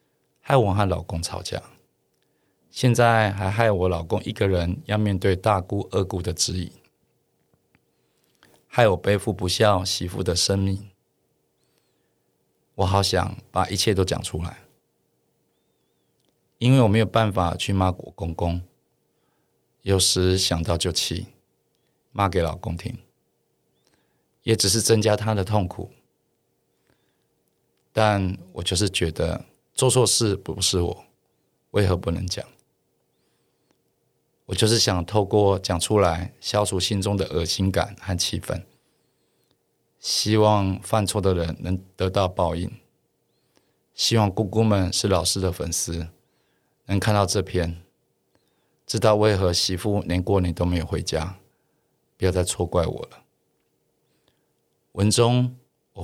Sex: male